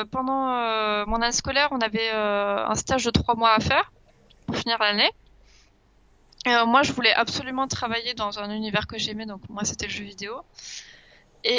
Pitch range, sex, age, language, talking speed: 210-250 Hz, female, 20-39, French, 190 wpm